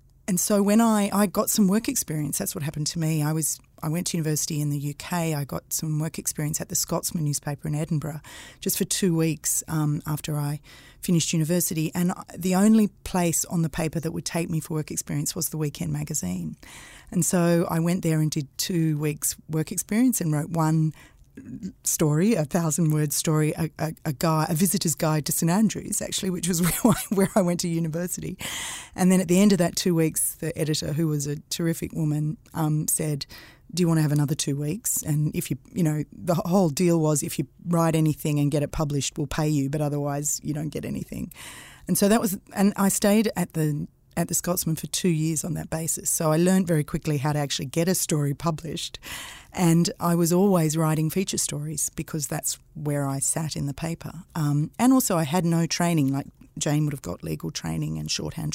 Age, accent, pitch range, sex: 30-49, Australian, 150-180 Hz, female